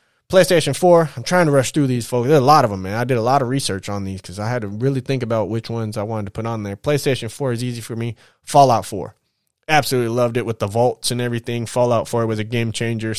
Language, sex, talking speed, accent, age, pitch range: English, male, 275 wpm, American, 20-39, 115-130 Hz